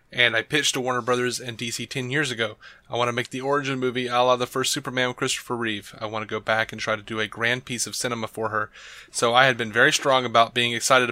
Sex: male